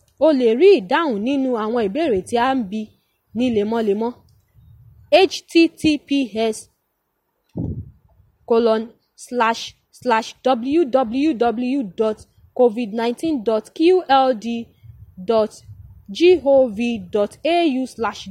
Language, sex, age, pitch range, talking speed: English, female, 20-39, 215-285 Hz, 90 wpm